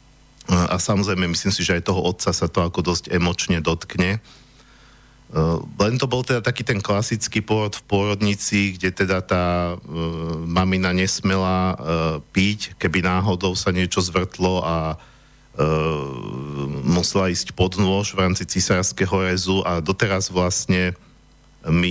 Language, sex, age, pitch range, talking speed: Slovak, male, 50-69, 90-105 Hz, 135 wpm